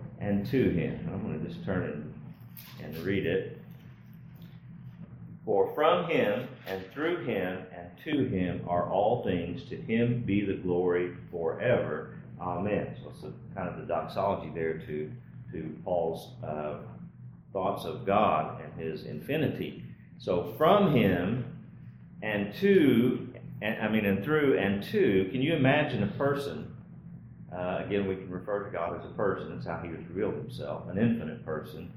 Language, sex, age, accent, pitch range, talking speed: English, male, 40-59, American, 90-140 Hz, 160 wpm